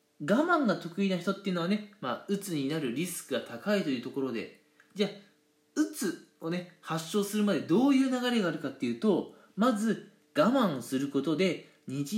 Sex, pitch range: male, 170-250 Hz